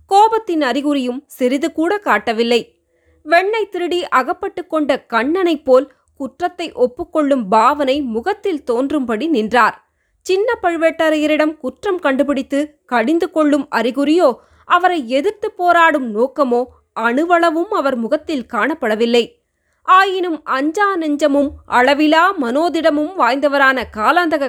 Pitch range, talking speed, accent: 240-325 Hz, 95 wpm, native